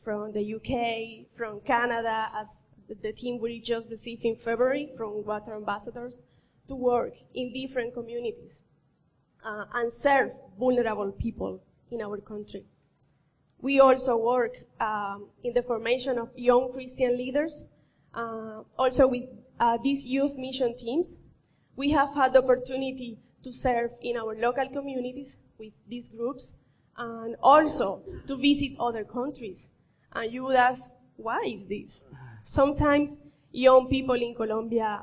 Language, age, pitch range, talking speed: English, 20-39, 225-265 Hz, 140 wpm